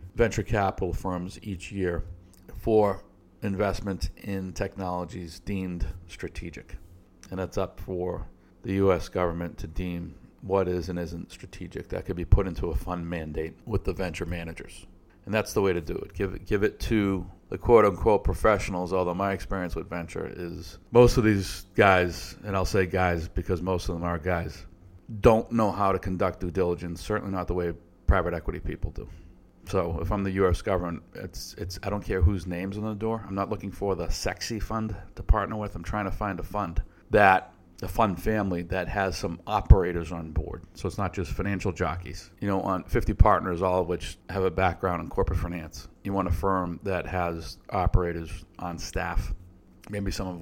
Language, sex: English, male